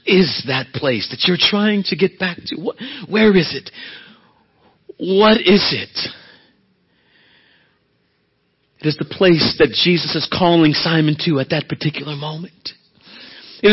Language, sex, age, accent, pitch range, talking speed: English, male, 40-59, American, 180-235 Hz, 135 wpm